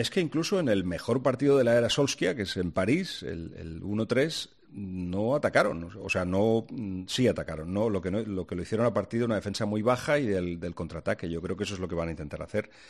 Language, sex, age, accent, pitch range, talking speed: Spanish, male, 40-59, Spanish, 90-110 Hz, 250 wpm